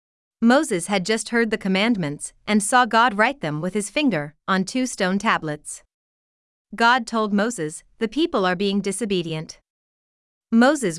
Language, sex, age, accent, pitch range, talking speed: English, female, 30-49, American, 185-240 Hz, 145 wpm